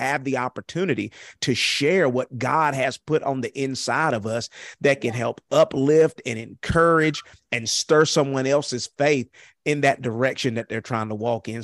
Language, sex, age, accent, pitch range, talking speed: English, male, 30-49, American, 120-140 Hz, 175 wpm